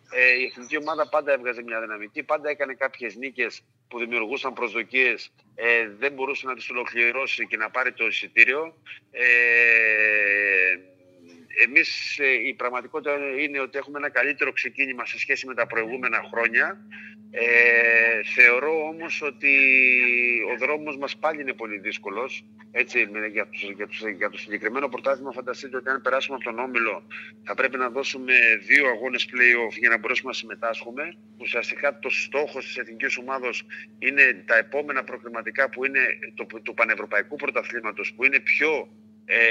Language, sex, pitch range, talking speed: Greek, male, 115-135 Hz, 145 wpm